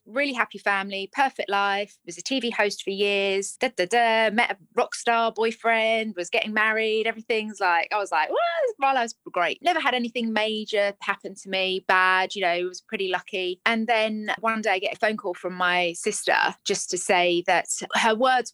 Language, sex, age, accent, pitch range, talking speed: English, female, 20-39, British, 175-215 Hz, 205 wpm